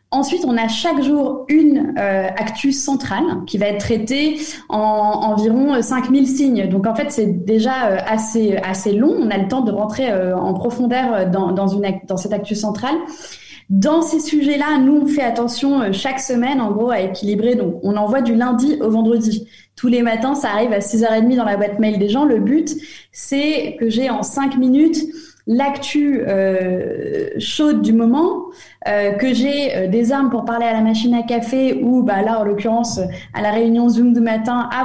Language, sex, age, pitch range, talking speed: French, female, 20-39, 210-275 Hz, 200 wpm